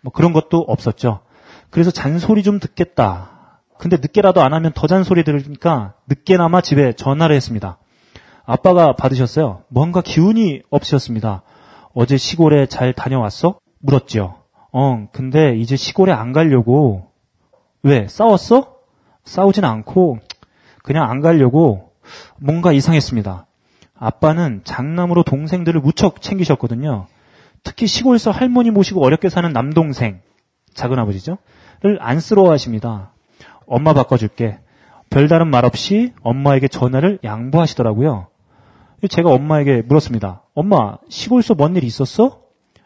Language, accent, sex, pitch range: Korean, native, male, 120-175 Hz